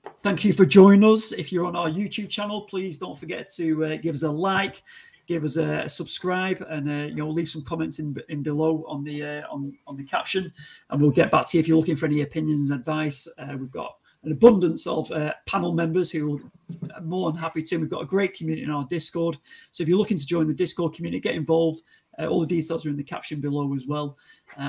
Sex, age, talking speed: male, 30-49, 250 wpm